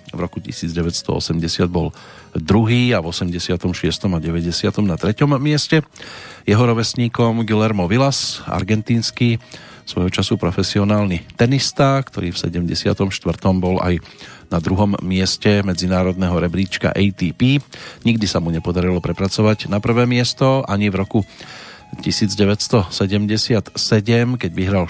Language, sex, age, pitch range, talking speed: Slovak, male, 40-59, 90-115 Hz, 115 wpm